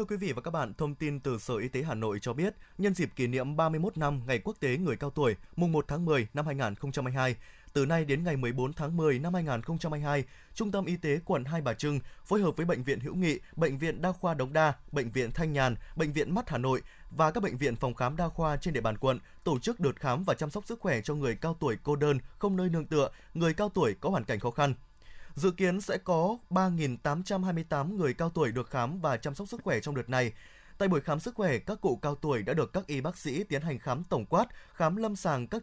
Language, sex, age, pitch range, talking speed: Vietnamese, male, 20-39, 135-180 Hz, 260 wpm